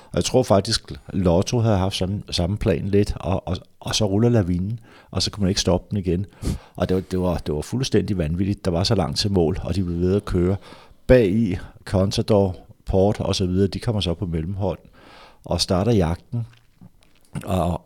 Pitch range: 90-110 Hz